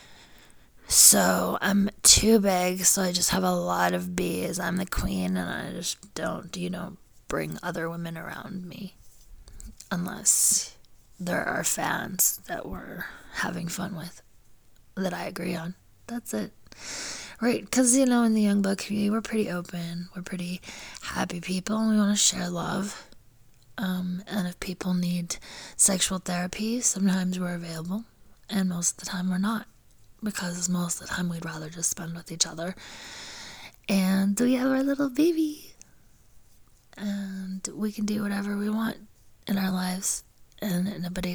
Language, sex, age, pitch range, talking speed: English, female, 20-39, 175-205 Hz, 160 wpm